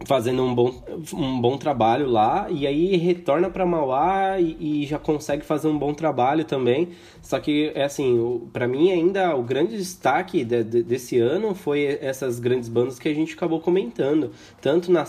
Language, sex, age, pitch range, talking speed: Portuguese, male, 20-39, 120-175 Hz, 185 wpm